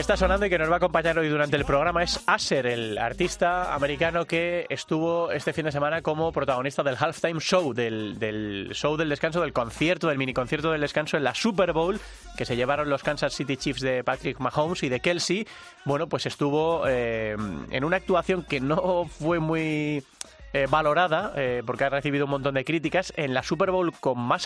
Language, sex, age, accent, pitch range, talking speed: Spanish, male, 30-49, Spanish, 130-170 Hz, 205 wpm